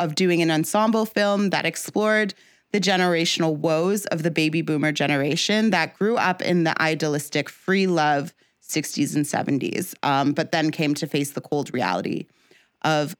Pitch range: 155-215 Hz